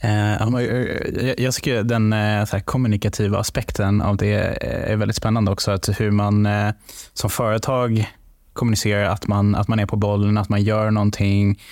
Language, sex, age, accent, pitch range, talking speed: Swedish, male, 20-39, Norwegian, 105-115 Hz, 150 wpm